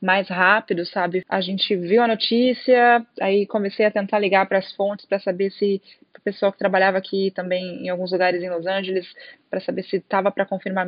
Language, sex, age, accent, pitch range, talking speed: Portuguese, female, 20-39, Brazilian, 195-220 Hz, 205 wpm